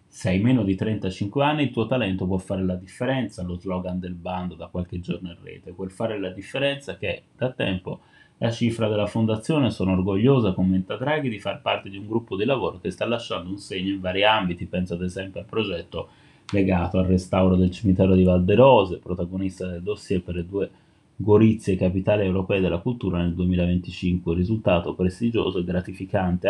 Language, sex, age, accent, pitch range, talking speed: Italian, male, 30-49, native, 90-105 Hz, 185 wpm